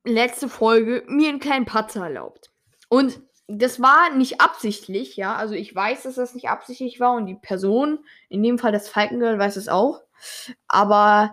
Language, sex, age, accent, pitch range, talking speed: German, female, 20-39, German, 210-280 Hz, 175 wpm